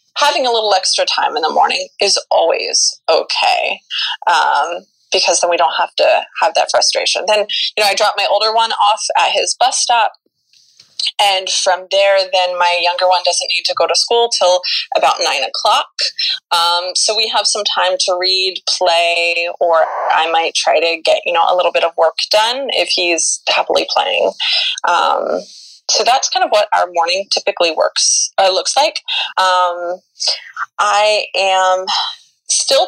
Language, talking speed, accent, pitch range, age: English, 170 wpm, American, 180-225 Hz, 20-39